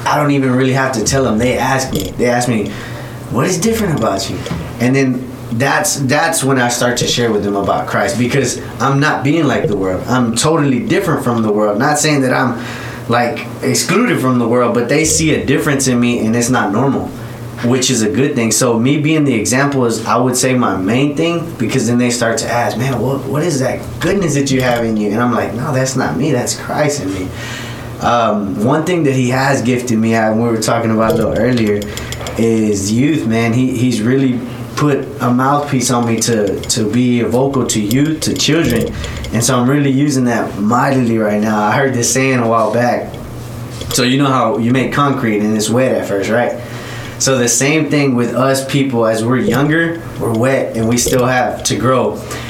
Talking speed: 220 wpm